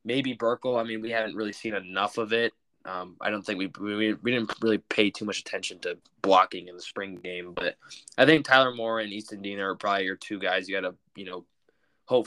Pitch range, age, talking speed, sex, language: 100-125 Hz, 20-39, 245 wpm, male, English